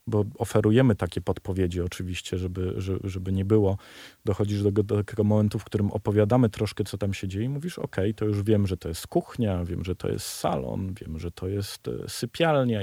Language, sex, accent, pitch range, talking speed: Polish, male, native, 95-115 Hz, 195 wpm